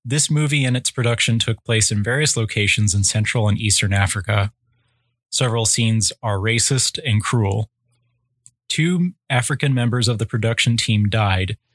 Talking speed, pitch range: 150 wpm, 110-125 Hz